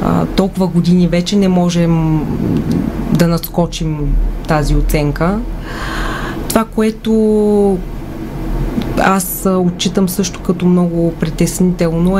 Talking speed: 85 wpm